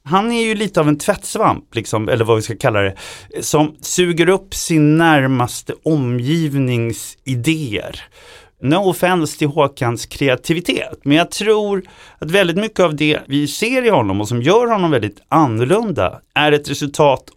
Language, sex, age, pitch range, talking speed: Swedish, male, 30-49, 120-170 Hz, 160 wpm